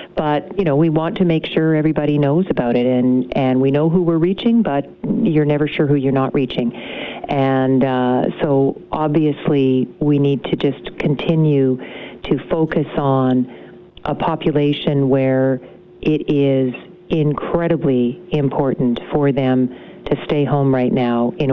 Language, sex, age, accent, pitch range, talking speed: English, female, 50-69, American, 130-155 Hz, 150 wpm